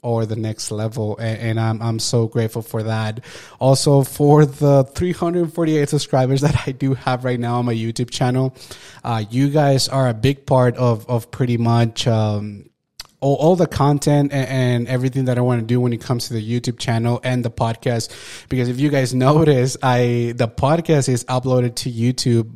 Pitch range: 115-130 Hz